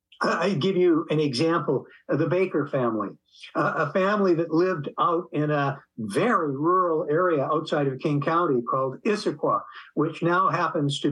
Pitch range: 160-200 Hz